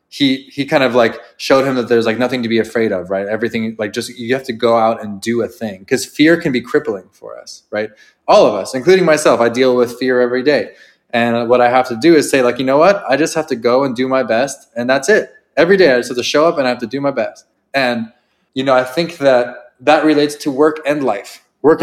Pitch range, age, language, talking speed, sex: 110-130 Hz, 20-39, English, 270 wpm, male